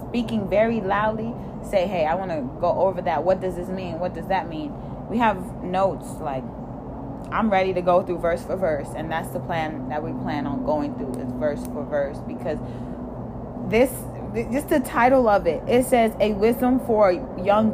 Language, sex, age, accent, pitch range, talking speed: English, female, 20-39, American, 175-220 Hz, 200 wpm